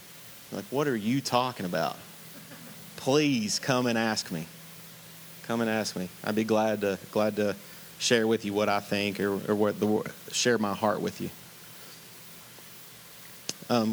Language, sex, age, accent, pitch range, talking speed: English, male, 30-49, American, 110-135 Hz, 160 wpm